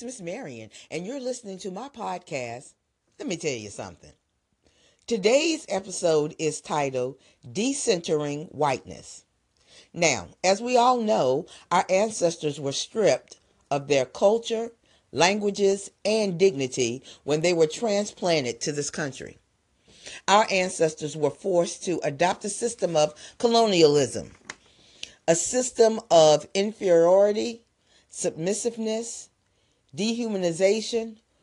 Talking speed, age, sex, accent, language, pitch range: 110 wpm, 40-59, female, American, English, 155-210 Hz